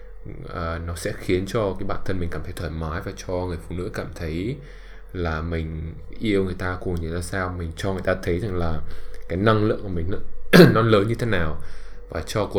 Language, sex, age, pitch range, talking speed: English, male, 20-39, 85-100 Hz, 240 wpm